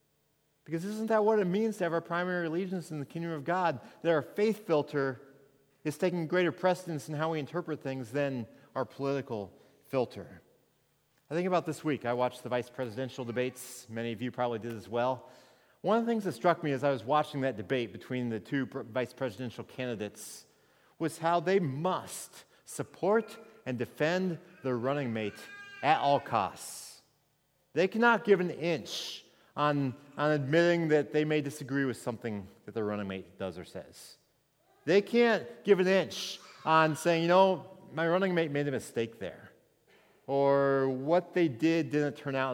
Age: 40-59